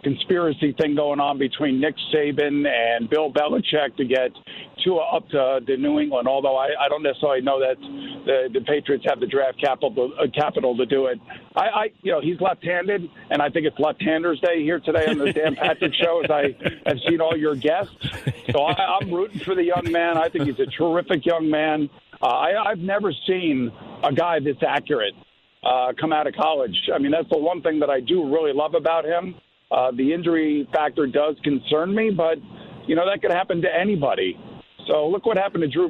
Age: 50-69